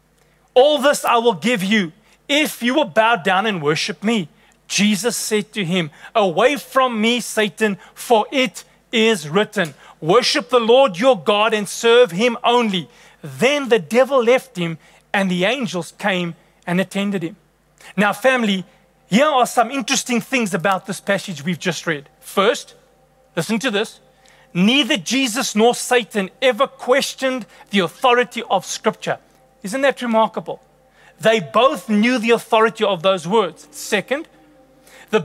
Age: 30-49